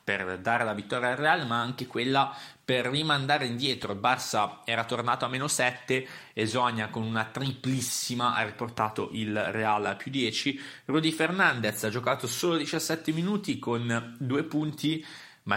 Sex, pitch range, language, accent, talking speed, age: male, 110-145 Hz, Italian, native, 160 wpm, 20-39